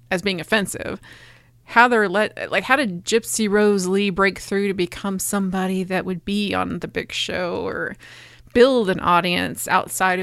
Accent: American